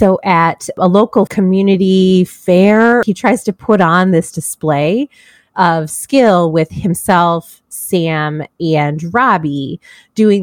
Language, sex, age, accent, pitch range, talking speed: English, female, 30-49, American, 165-215 Hz, 120 wpm